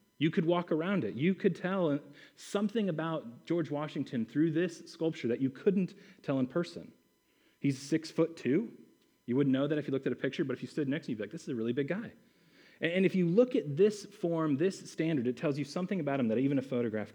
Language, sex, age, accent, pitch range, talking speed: English, male, 30-49, American, 130-175 Hz, 245 wpm